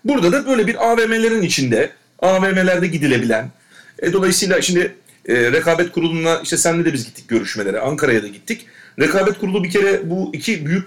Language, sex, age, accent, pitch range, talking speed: Turkish, male, 40-59, native, 145-195 Hz, 165 wpm